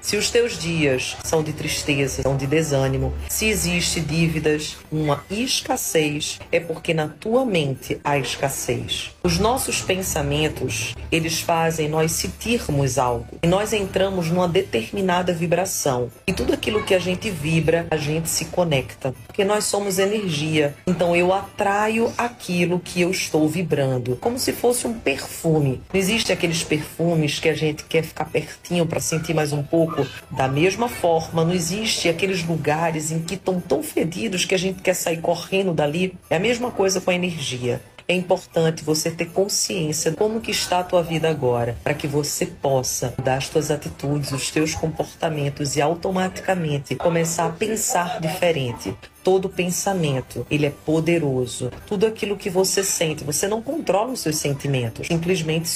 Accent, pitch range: Brazilian, 145-185 Hz